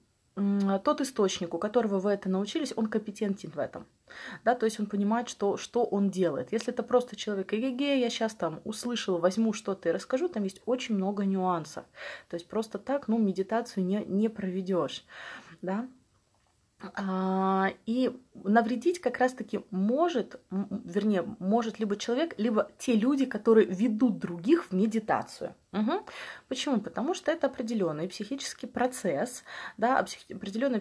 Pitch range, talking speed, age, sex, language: 190-245 Hz, 150 wpm, 20-39, female, Russian